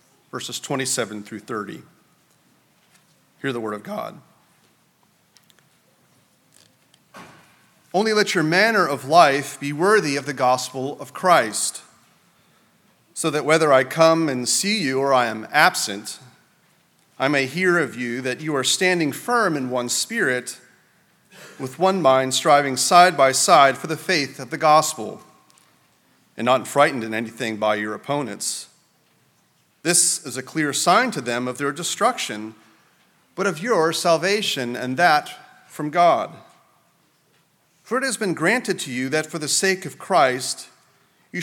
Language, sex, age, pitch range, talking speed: English, male, 40-59, 125-175 Hz, 145 wpm